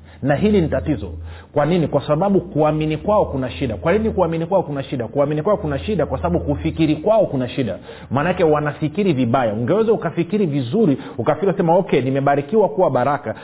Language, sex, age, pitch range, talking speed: Swahili, male, 40-59, 140-180 Hz, 170 wpm